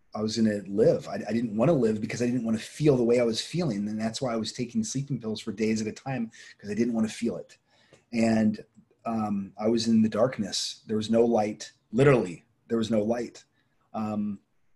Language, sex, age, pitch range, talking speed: English, male, 30-49, 110-125 Hz, 235 wpm